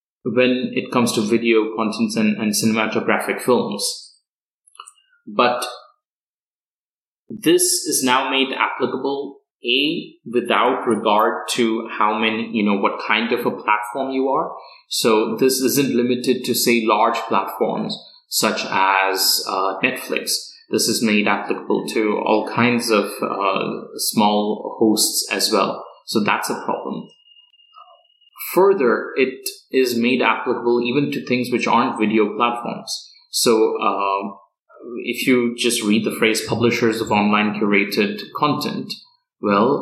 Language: English